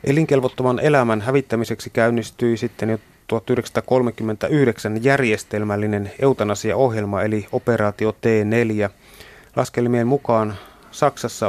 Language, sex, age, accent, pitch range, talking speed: Finnish, male, 30-49, native, 105-125 Hz, 80 wpm